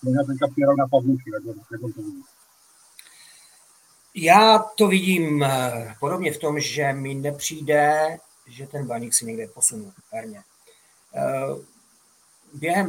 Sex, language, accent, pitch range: male, Czech, native, 135-165 Hz